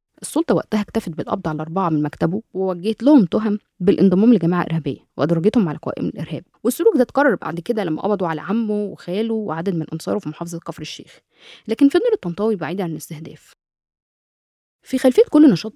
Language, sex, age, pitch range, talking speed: Arabic, female, 20-39, 165-220 Hz, 170 wpm